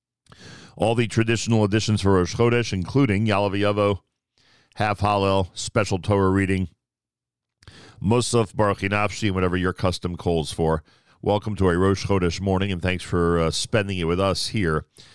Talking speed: 150 wpm